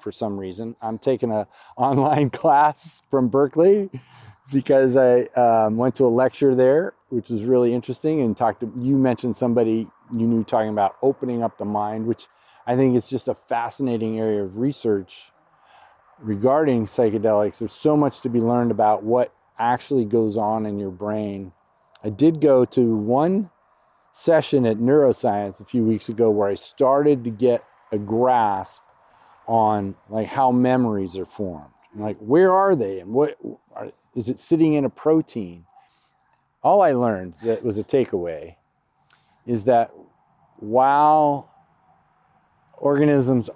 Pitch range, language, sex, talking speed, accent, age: 105-130 Hz, English, male, 155 wpm, American, 40-59